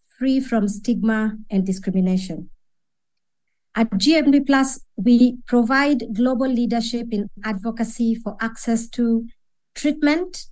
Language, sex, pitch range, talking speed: English, male, 215-260 Hz, 95 wpm